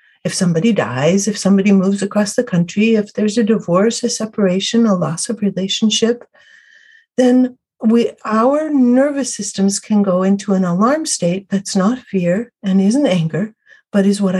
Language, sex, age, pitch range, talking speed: English, female, 60-79, 190-245 Hz, 165 wpm